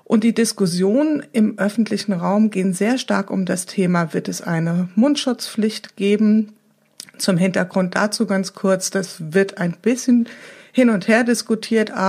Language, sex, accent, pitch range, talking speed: German, female, German, 185-220 Hz, 150 wpm